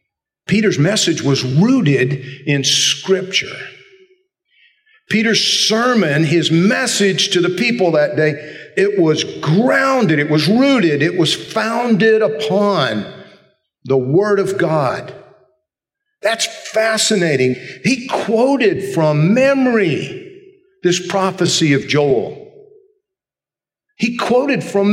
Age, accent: 50-69, American